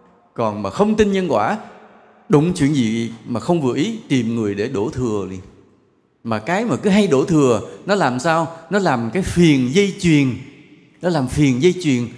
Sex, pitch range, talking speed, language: male, 120-175 Hz, 195 wpm, Vietnamese